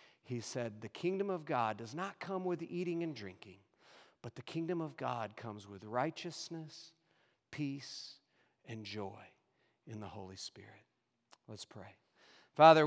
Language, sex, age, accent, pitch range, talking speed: English, male, 50-69, American, 120-155 Hz, 145 wpm